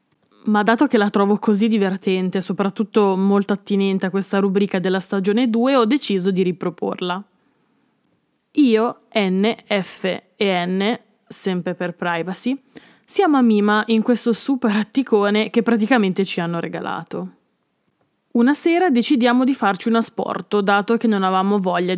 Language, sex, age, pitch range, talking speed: Italian, female, 20-39, 195-235 Hz, 140 wpm